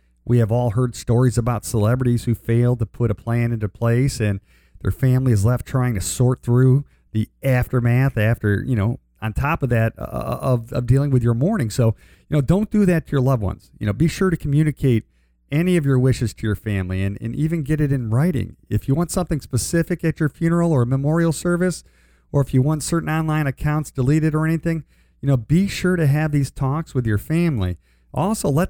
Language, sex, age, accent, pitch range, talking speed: English, male, 50-69, American, 110-150 Hz, 220 wpm